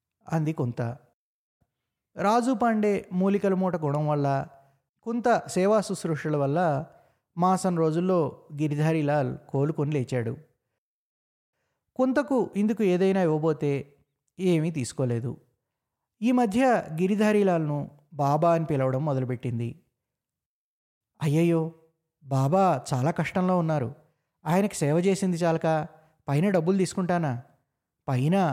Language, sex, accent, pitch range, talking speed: Telugu, male, native, 140-185 Hz, 90 wpm